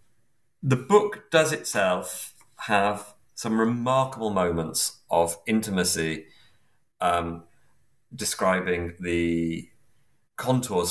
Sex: male